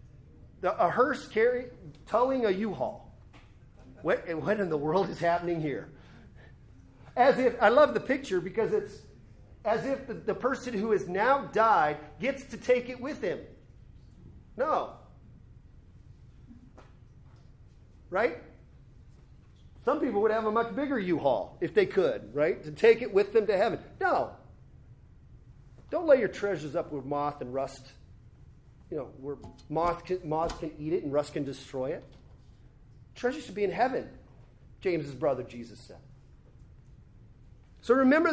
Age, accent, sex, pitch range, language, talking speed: 40-59, American, male, 155-250 Hz, English, 150 wpm